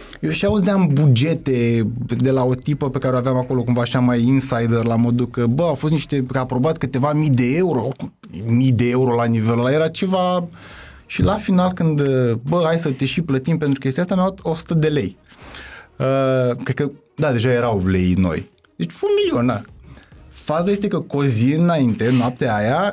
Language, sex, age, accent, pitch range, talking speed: Romanian, male, 20-39, native, 125-175 Hz, 200 wpm